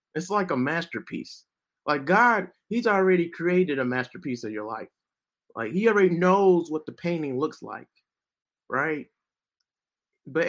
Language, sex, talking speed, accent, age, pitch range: English, male, 145 wpm, American, 30-49, 140-185 Hz